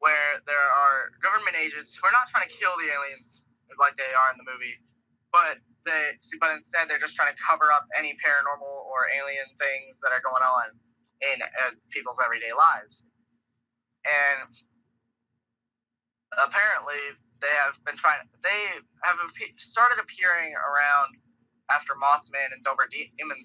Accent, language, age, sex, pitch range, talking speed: American, English, 20-39, male, 120-155 Hz, 150 wpm